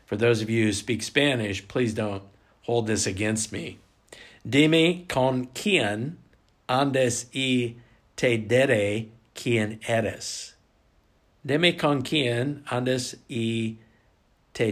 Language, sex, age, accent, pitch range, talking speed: English, male, 50-69, American, 110-140 Hz, 115 wpm